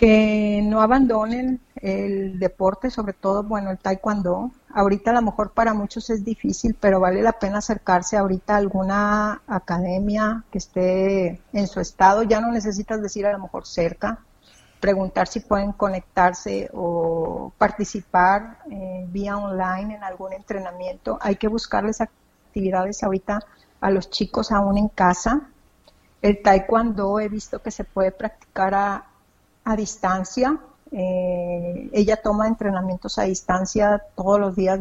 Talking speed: 145 wpm